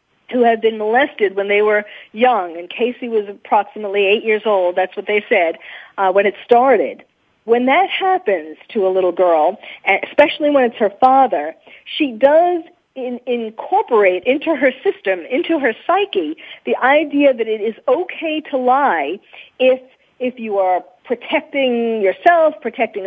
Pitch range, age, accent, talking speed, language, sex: 215-290 Hz, 40-59, American, 155 wpm, English, female